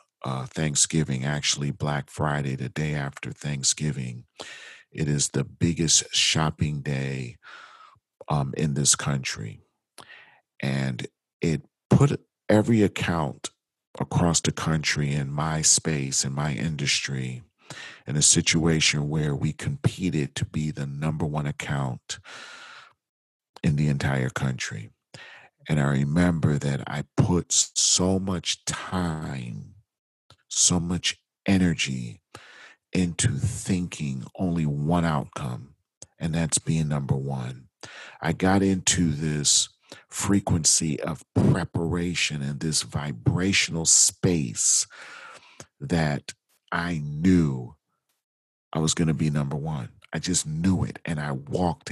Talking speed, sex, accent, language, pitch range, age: 115 wpm, male, American, English, 70-85 Hz, 40-59